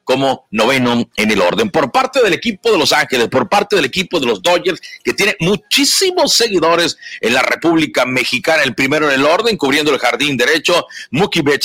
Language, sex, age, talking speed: Spanish, male, 50-69, 190 wpm